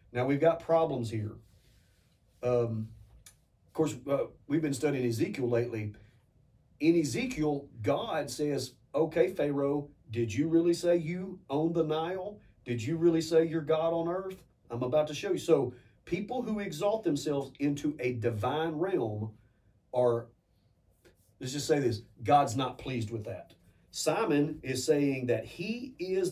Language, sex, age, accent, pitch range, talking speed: English, male, 40-59, American, 120-155 Hz, 150 wpm